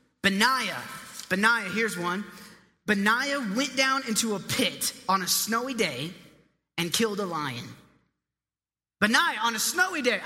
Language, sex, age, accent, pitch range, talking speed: English, male, 30-49, American, 220-285 Hz, 135 wpm